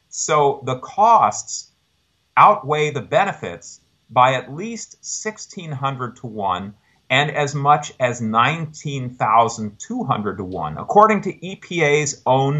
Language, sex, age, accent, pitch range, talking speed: English, male, 50-69, American, 125-160 Hz, 110 wpm